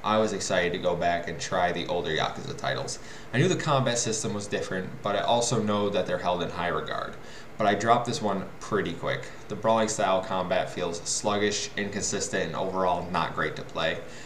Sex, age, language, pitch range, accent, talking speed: male, 20-39, English, 95-110 Hz, American, 205 wpm